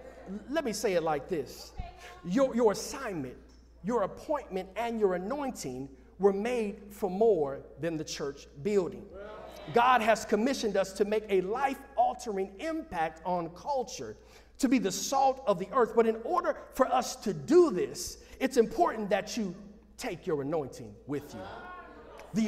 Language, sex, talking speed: English, male, 155 wpm